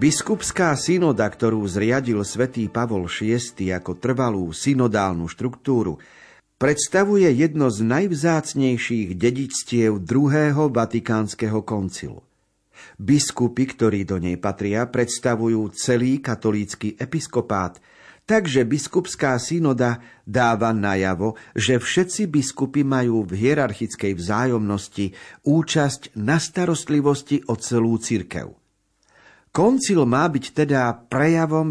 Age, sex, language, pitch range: 50-69, male, Slovak, 105-140 Hz